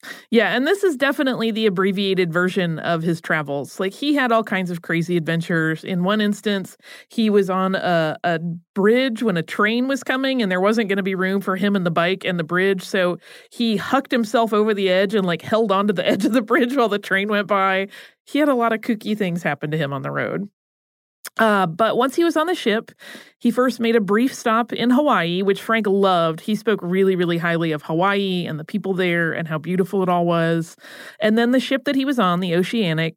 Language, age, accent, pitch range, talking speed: English, 30-49, American, 180-240 Hz, 235 wpm